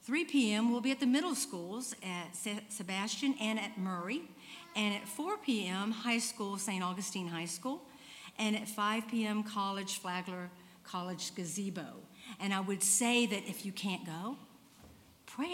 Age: 50-69